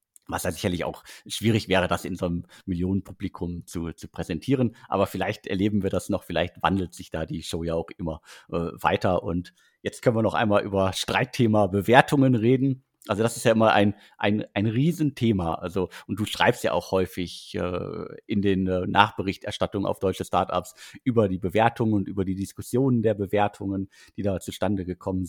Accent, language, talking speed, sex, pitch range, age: German, German, 185 wpm, male, 90-110 Hz, 50-69